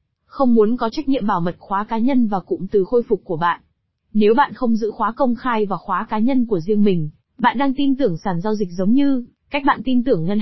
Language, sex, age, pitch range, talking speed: Vietnamese, female, 20-39, 190-245 Hz, 260 wpm